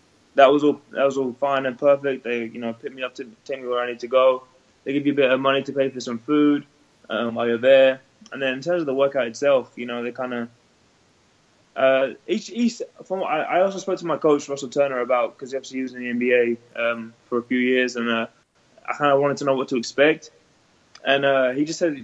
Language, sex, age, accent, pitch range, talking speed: English, male, 20-39, British, 120-145 Hz, 255 wpm